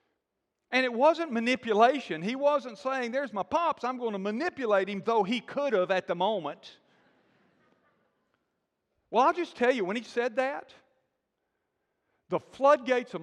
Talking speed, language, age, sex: 155 wpm, English, 50-69, male